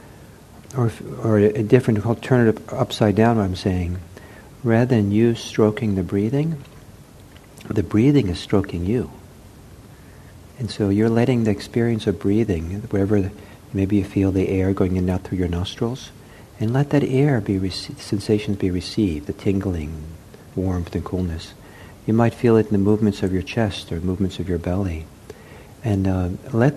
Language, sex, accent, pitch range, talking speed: English, male, American, 95-115 Hz, 165 wpm